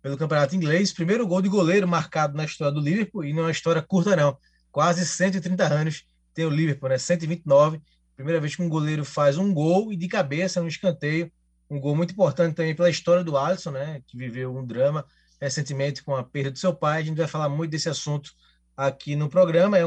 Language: Portuguese